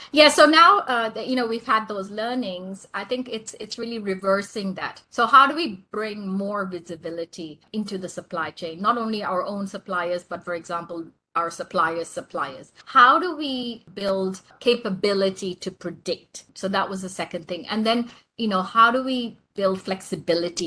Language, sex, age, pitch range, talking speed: English, female, 30-49, 165-210 Hz, 180 wpm